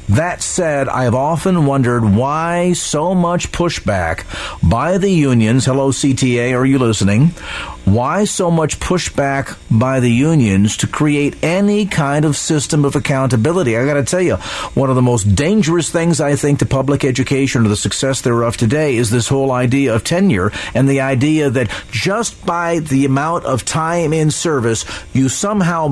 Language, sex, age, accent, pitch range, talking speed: English, male, 50-69, American, 125-165 Hz, 170 wpm